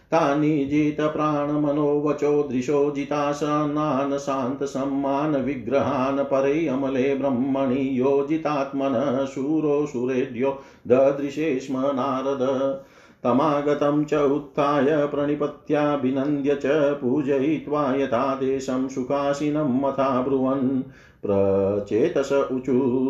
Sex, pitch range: male, 130-145 Hz